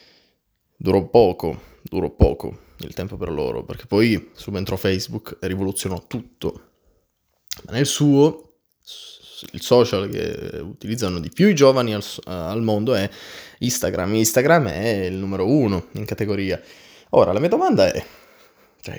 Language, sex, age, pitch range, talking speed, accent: Italian, male, 20-39, 100-145 Hz, 140 wpm, native